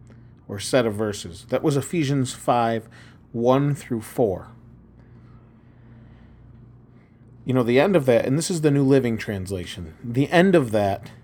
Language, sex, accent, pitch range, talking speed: English, male, American, 115-130 Hz, 150 wpm